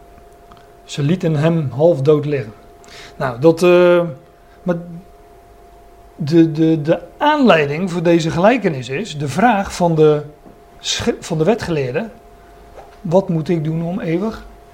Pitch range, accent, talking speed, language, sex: 155-210 Hz, Dutch, 130 wpm, Dutch, male